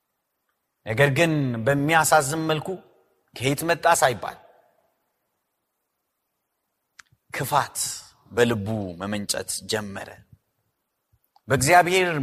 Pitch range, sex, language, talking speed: 155-225 Hz, male, Amharic, 60 wpm